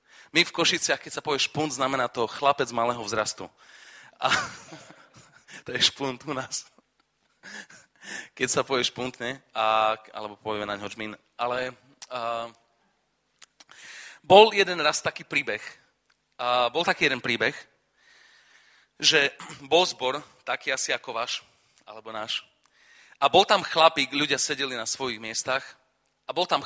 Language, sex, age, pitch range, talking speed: Czech, male, 30-49, 125-170 Hz, 135 wpm